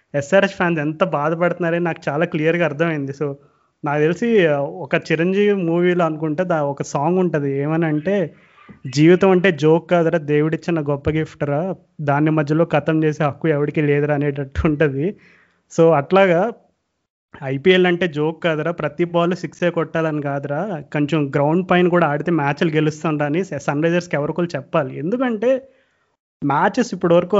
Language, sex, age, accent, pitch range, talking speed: Telugu, male, 30-49, native, 150-180 Hz, 145 wpm